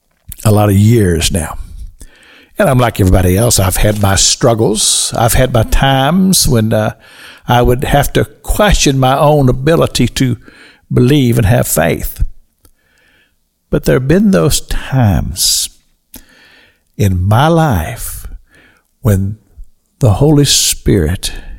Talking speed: 130 wpm